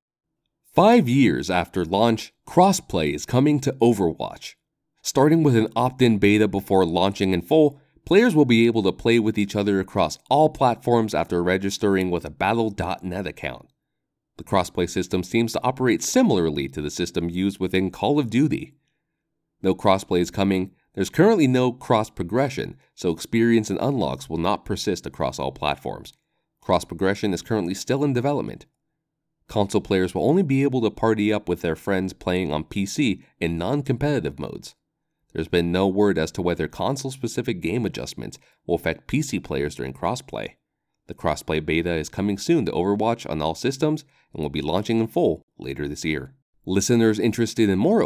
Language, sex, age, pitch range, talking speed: English, male, 30-49, 90-130 Hz, 170 wpm